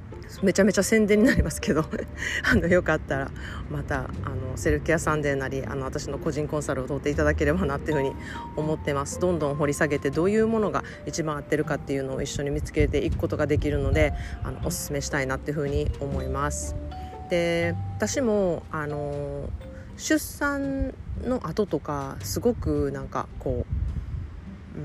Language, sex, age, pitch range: Japanese, female, 30-49, 140-205 Hz